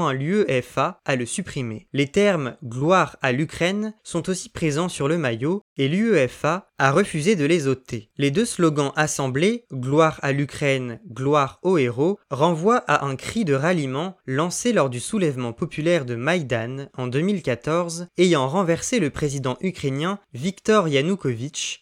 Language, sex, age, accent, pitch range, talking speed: French, male, 20-39, French, 135-180 Hz, 160 wpm